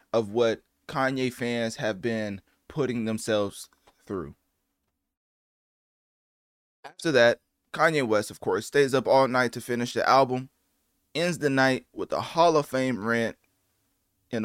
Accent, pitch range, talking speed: American, 110-135 Hz, 135 wpm